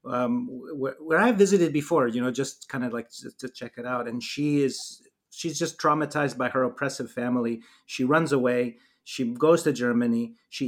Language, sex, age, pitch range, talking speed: English, male, 30-49, 130-155 Hz, 195 wpm